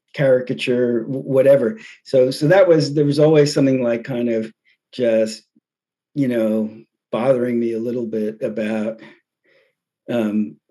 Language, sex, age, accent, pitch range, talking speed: English, male, 50-69, American, 110-135 Hz, 130 wpm